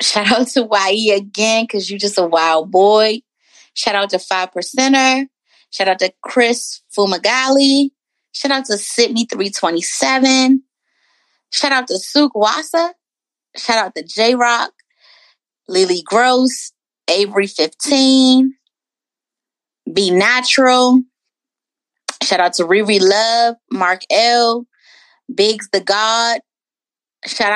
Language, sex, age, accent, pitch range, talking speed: English, female, 30-49, American, 205-270 Hz, 120 wpm